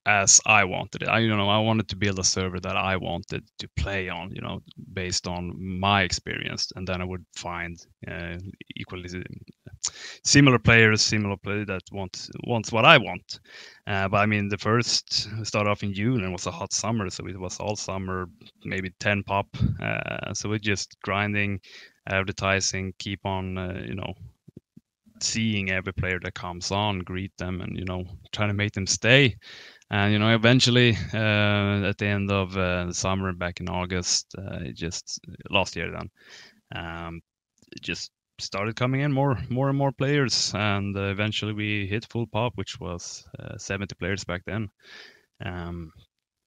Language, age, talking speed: English, 20-39, 180 wpm